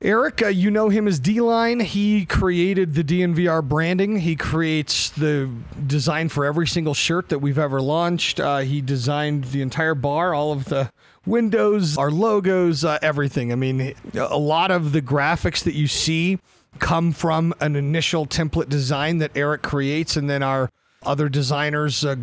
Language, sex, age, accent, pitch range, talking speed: English, male, 40-59, American, 130-160 Hz, 170 wpm